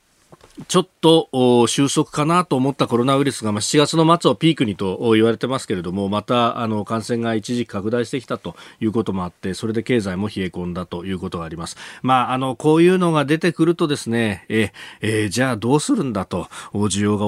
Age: 40-59